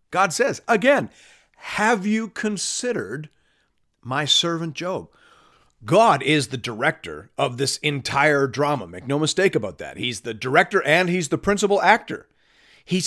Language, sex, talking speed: English, male, 140 wpm